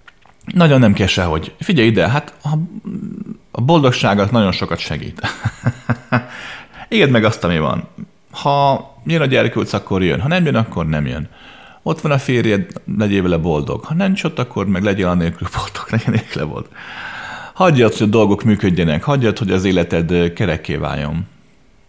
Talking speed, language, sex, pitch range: 155 wpm, Hungarian, male, 95-135 Hz